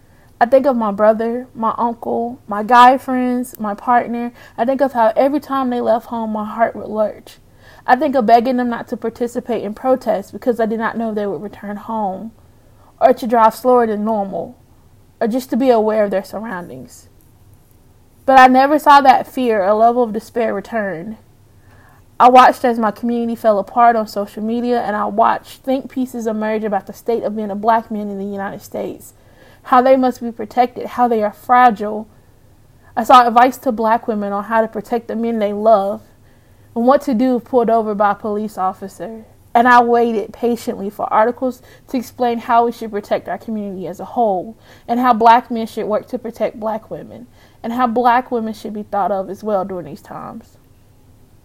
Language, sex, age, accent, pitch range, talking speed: English, female, 20-39, American, 200-245 Hz, 200 wpm